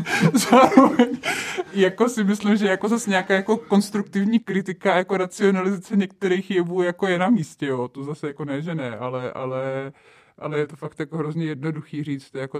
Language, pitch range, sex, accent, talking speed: Czech, 155-190 Hz, male, native, 175 wpm